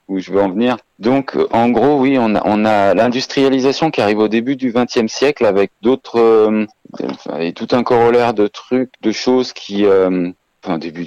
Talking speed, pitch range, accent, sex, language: 195 wpm, 90-115 Hz, French, male, French